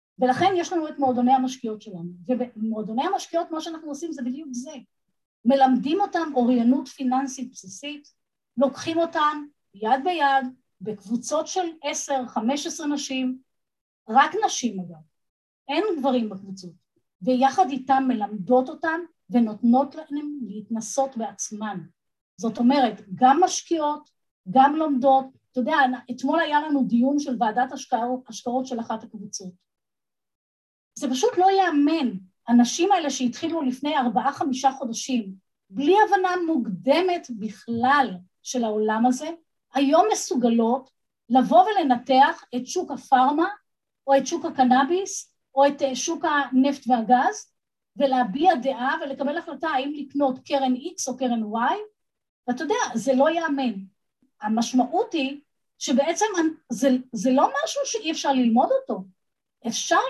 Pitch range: 240-310 Hz